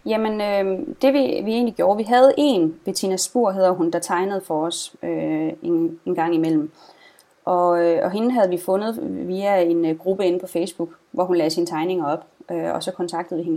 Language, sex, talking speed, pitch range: Danish, female, 210 wpm, 175-225 Hz